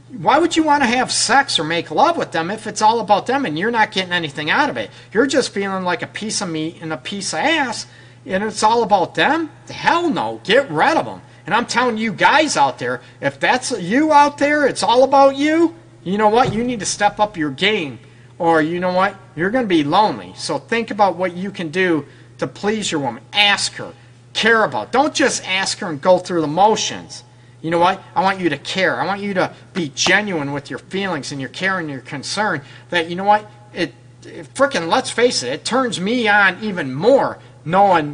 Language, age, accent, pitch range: English, 40-59, American, 155-240 Hz